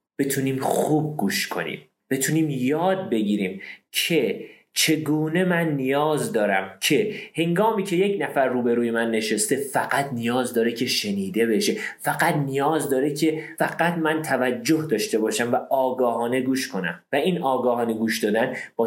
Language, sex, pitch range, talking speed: Persian, male, 125-175 Hz, 145 wpm